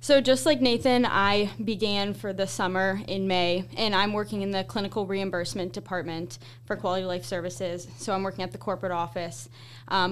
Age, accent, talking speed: 10-29, American, 185 wpm